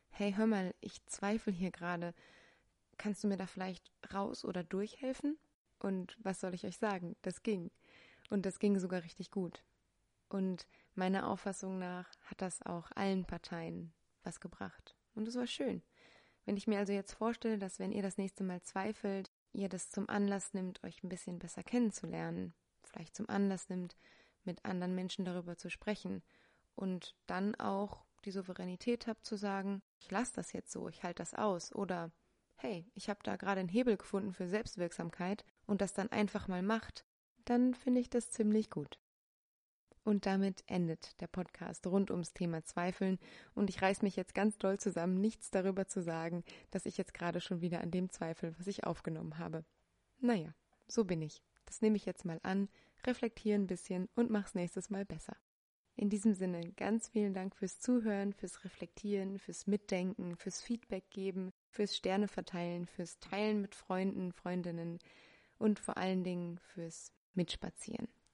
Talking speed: 175 wpm